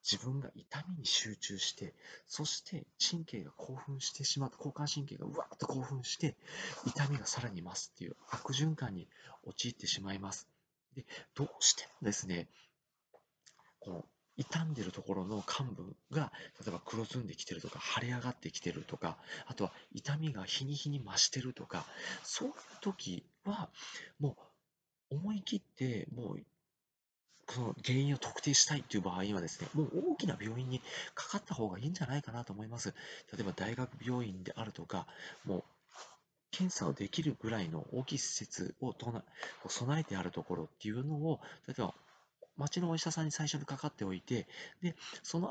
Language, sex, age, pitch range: Japanese, male, 40-59, 110-155 Hz